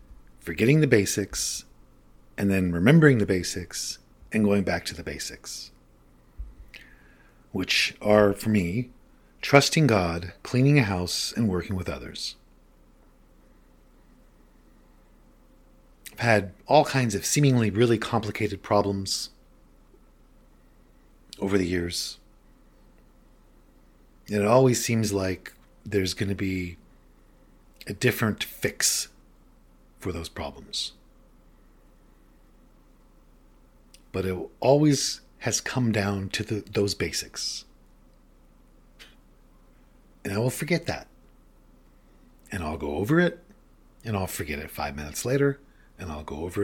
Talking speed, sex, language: 110 wpm, male, English